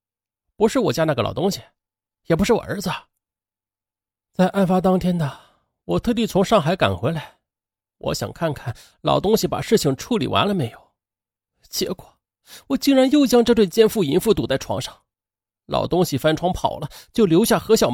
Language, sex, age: Chinese, male, 30-49